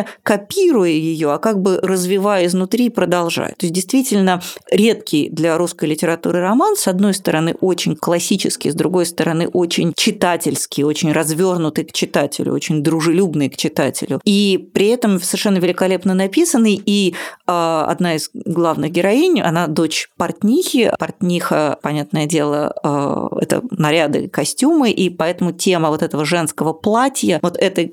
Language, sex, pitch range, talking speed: Russian, female, 160-205 Hz, 135 wpm